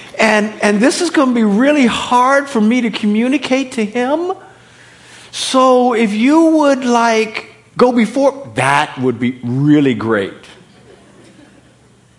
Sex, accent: male, American